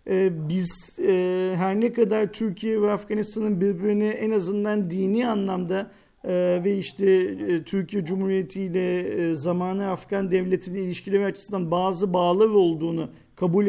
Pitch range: 190-255 Hz